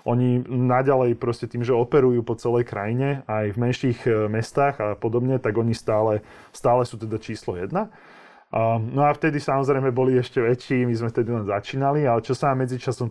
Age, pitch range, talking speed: 20-39, 115-130 Hz, 185 wpm